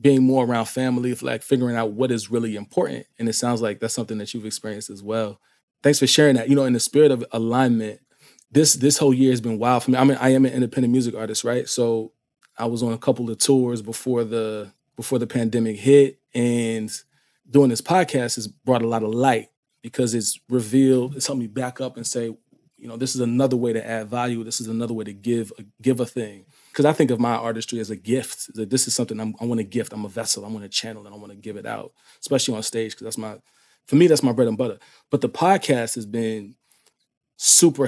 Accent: American